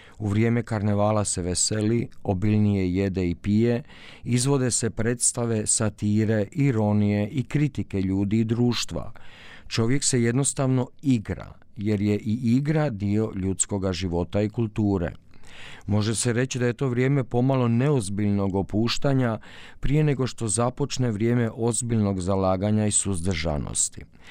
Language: Croatian